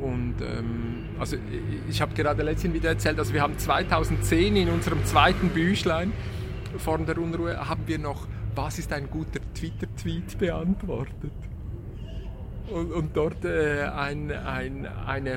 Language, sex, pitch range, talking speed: German, male, 90-140 Hz, 145 wpm